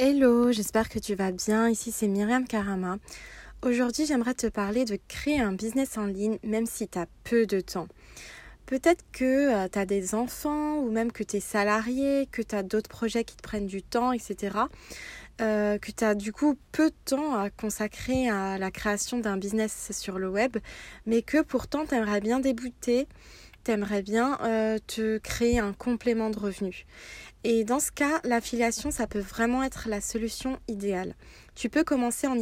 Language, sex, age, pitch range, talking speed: French, female, 20-39, 210-255 Hz, 190 wpm